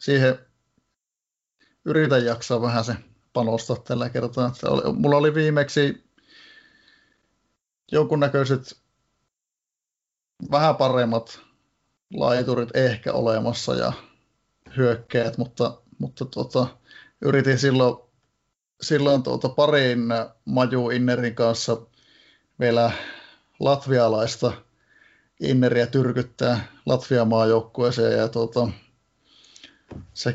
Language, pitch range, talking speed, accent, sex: Finnish, 120-135 Hz, 75 wpm, native, male